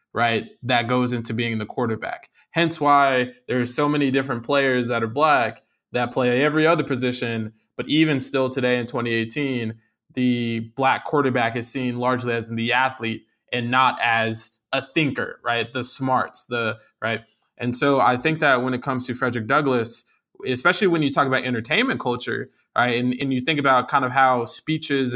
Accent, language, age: American, English, 20-39